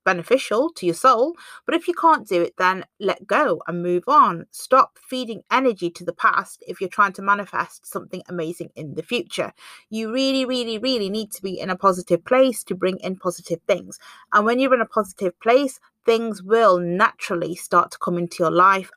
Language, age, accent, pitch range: English, 30-49, British, 175-230 Hz